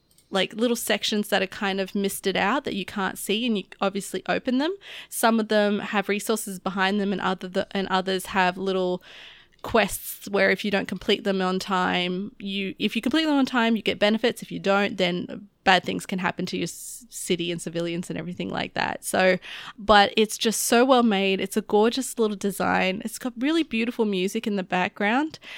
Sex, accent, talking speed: female, Australian, 205 wpm